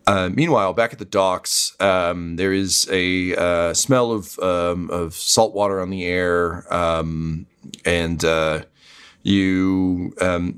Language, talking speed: English, 140 wpm